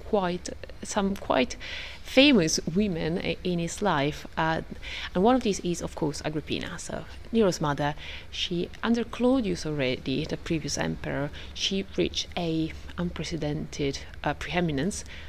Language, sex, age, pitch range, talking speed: English, female, 30-49, 155-200 Hz, 135 wpm